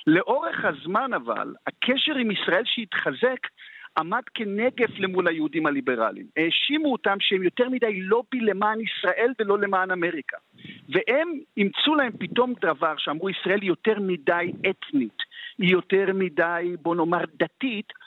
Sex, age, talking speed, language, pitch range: male, 50-69, 135 wpm, Hebrew, 185-250 Hz